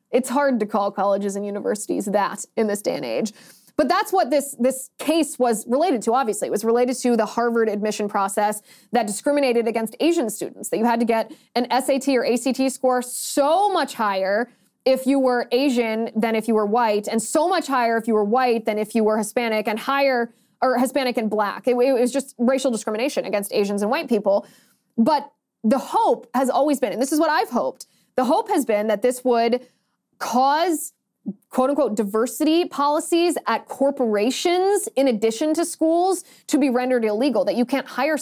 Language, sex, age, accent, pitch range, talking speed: English, female, 20-39, American, 220-275 Hz, 200 wpm